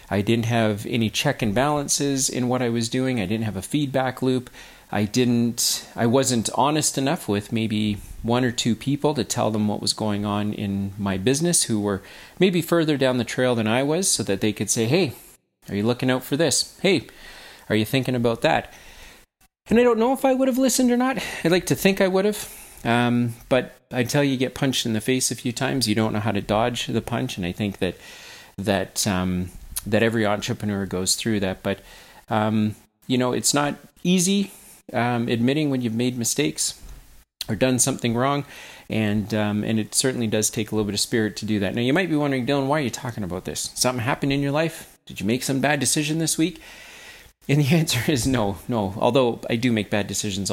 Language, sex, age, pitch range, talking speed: English, male, 40-59, 105-145 Hz, 225 wpm